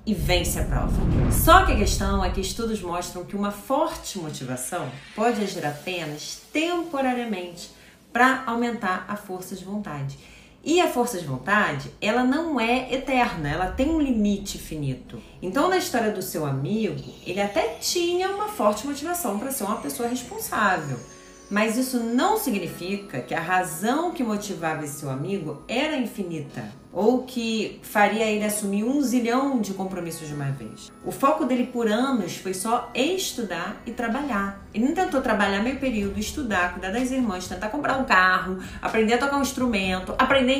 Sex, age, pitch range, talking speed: female, 40-59, 185-260 Hz, 165 wpm